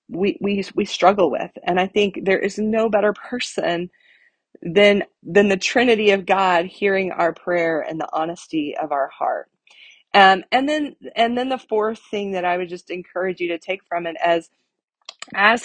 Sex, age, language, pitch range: female, 30-49, English, 170-205 Hz